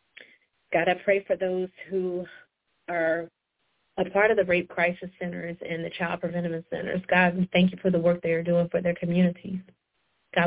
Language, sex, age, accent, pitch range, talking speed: English, female, 20-39, American, 175-190 Hz, 190 wpm